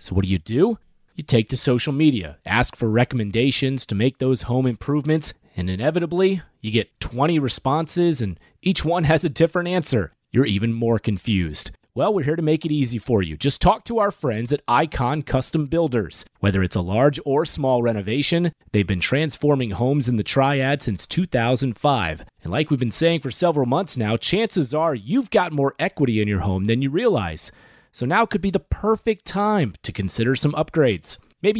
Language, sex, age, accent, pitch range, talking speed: English, male, 30-49, American, 115-160 Hz, 195 wpm